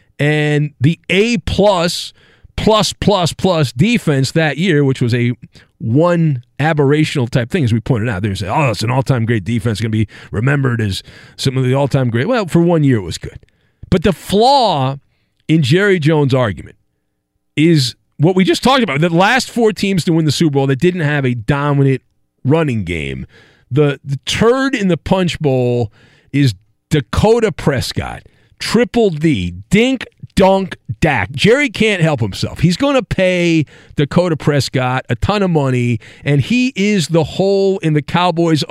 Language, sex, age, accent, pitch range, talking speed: English, male, 40-59, American, 135-180 Hz, 165 wpm